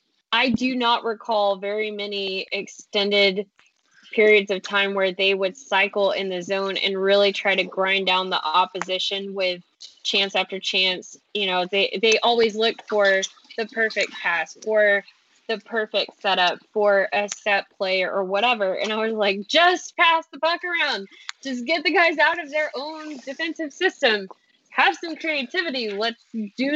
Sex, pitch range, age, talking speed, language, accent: female, 200-285 Hz, 10-29, 165 wpm, English, American